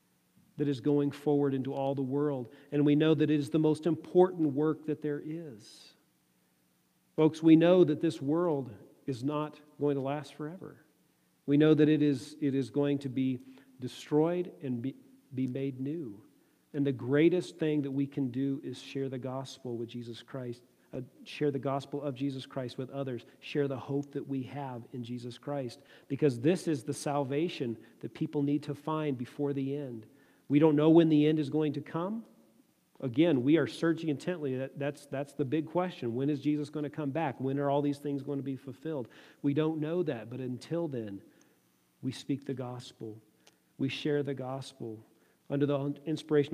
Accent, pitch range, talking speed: American, 130-150 Hz, 190 wpm